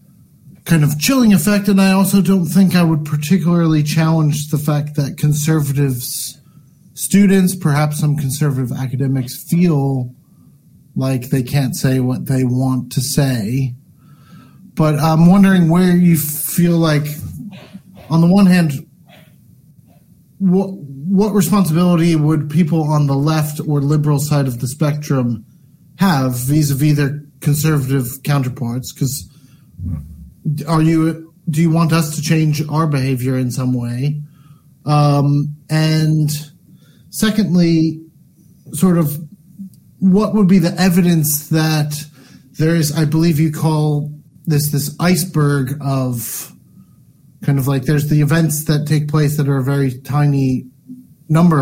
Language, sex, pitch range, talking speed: English, male, 140-165 Hz, 130 wpm